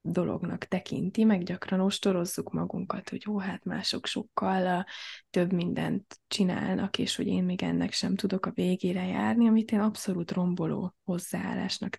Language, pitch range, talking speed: Hungarian, 180-210 Hz, 145 wpm